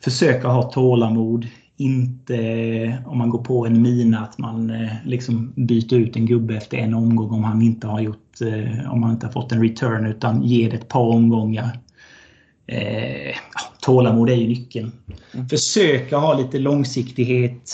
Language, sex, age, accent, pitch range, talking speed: Swedish, male, 30-49, native, 115-125 Hz, 155 wpm